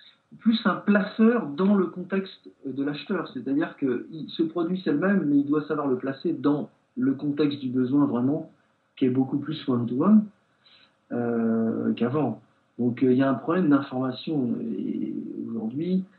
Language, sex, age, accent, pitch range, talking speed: French, male, 50-69, French, 115-175 Hz, 165 wpm